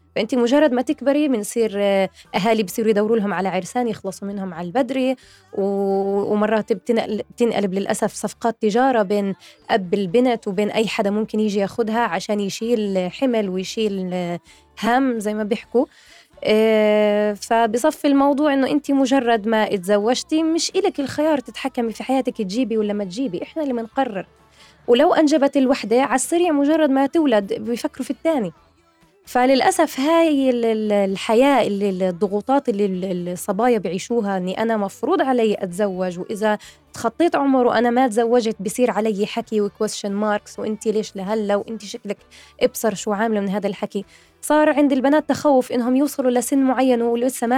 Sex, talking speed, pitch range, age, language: female, 145 wpm, 205-255 Hz, 20-39, Arabic